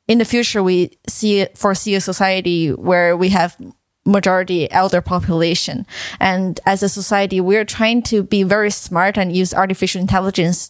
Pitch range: 190-225 Hz